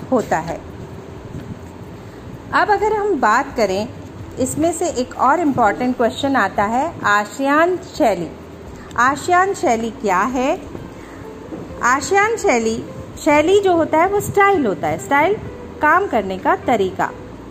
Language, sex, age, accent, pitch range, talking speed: Hindi, female, 40-59, native, 220-320 Hz, 125 wpm